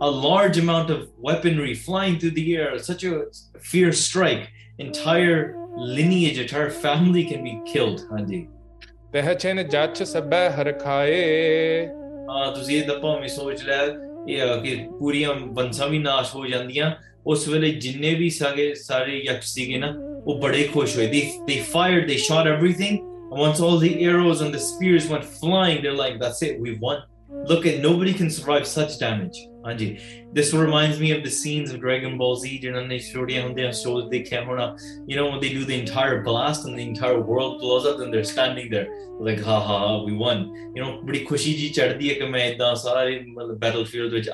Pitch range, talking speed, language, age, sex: 120-160 Hz, 110 wpm, English, 20-39, male